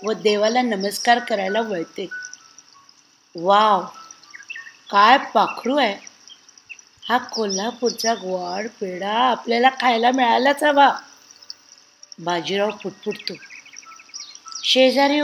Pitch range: 215-255 Hz